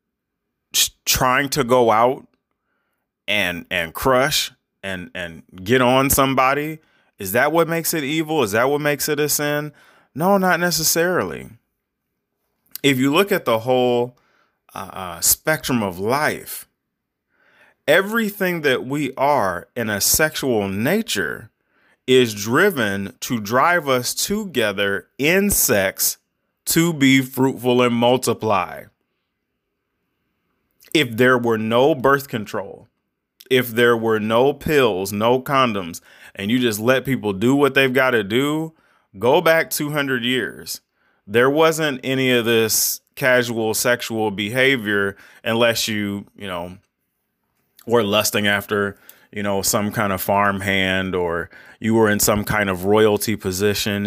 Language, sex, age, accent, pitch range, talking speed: English, male, 30-49, American, 105-145 Hz, 130 wpm